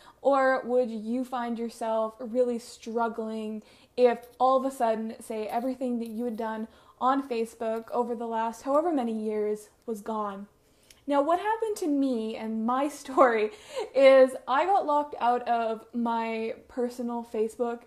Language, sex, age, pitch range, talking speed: English, female, 20-39, 225-265 Hz, 150 wpm